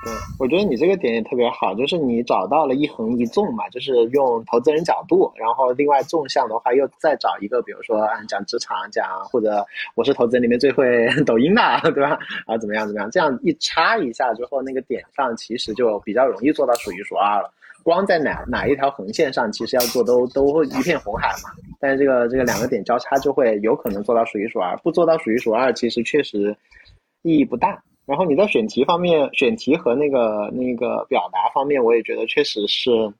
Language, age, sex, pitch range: Chinese, 20-39, male, 120-165 Hz